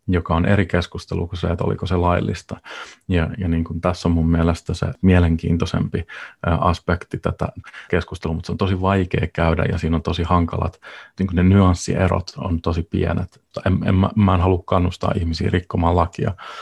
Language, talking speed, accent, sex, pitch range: Finnish, 185 wpm, native, male, 85-95 Hz